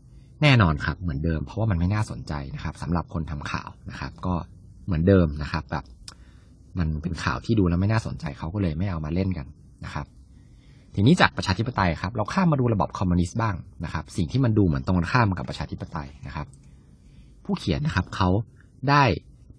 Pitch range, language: 85-125 Hz, Thai